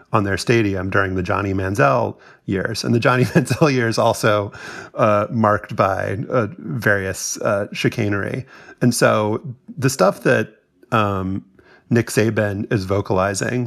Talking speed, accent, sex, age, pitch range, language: 135 wpm, American, male, 30-49, 100-125 Hz, English